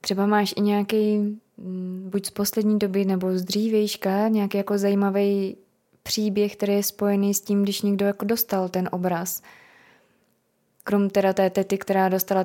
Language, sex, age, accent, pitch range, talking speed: Czech, female, 20-39, native, 195-210 Hz, 155 wpm